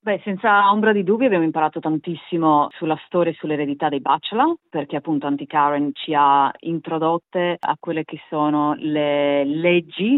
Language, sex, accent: Italian, female, native